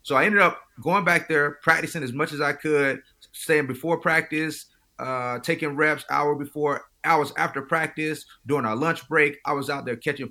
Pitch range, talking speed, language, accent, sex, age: 115-150 Hz, 190 wpm, English, American, male, 30-49